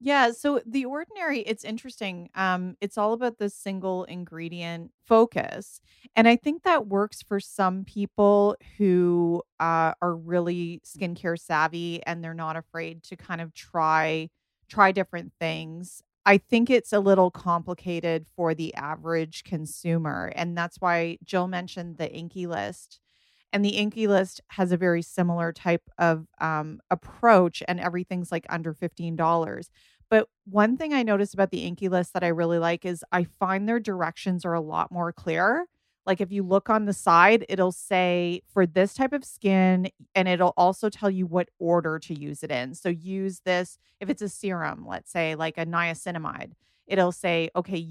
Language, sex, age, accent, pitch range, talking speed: English, female, 30-49, American, 165-200 Hz, 170 wpm